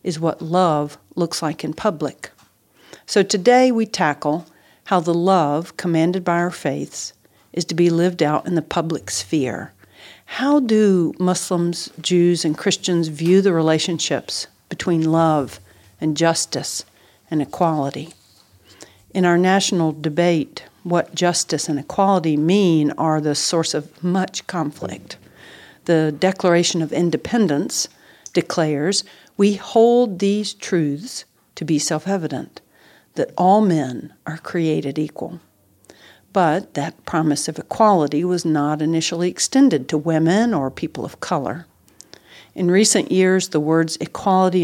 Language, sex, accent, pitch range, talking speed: English, female, American, 155-185 Hz, 130 wpm